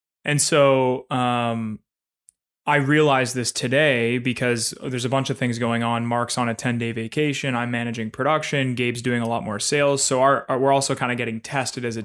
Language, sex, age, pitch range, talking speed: English, male, 20-39, 115-135 Hz, 195 wpm